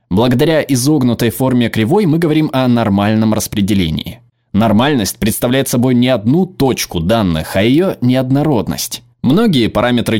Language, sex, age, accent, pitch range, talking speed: Russian, male, 20-39, native, 105-135 Hz, 125 wpm